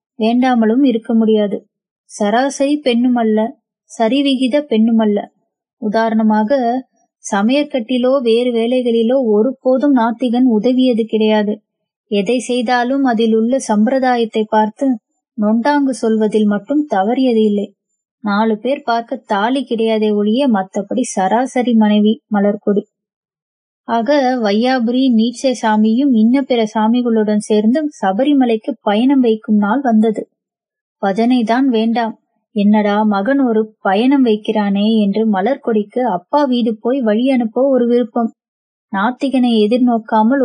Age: 20-39